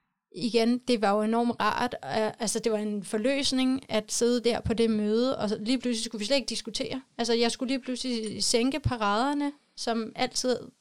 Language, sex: Danish, female